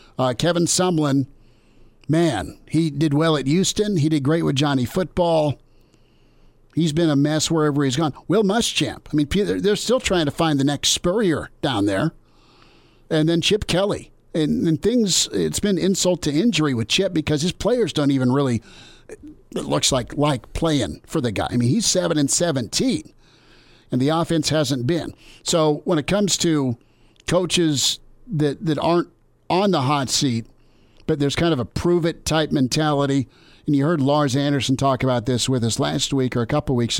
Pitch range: 130-165 Hz